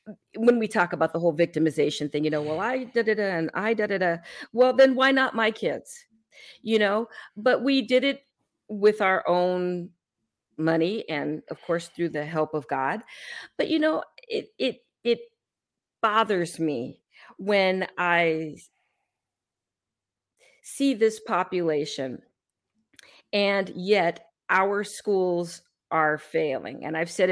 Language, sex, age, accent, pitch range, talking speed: English, female, 50-69, American, 165-225 Hz, 155 wpm